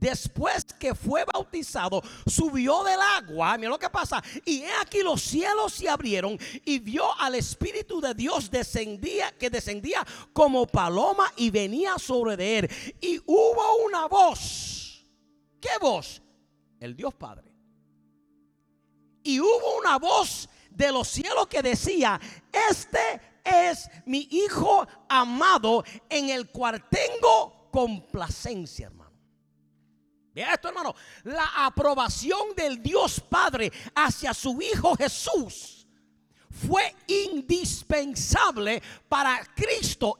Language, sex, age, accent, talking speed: English, male, 50-69, American, 115 wpm